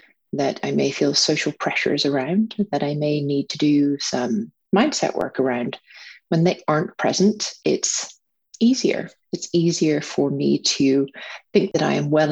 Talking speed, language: 160 wpm, English